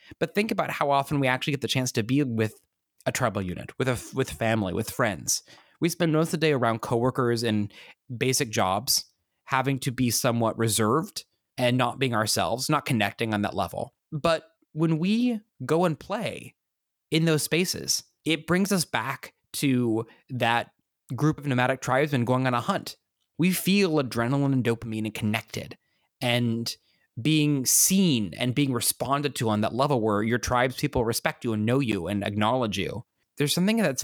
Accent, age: American, 20-39